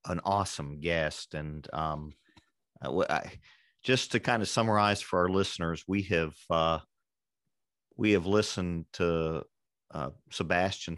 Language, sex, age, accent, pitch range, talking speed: English, male, 40-59, American, 80-95 Hz, 125 wpm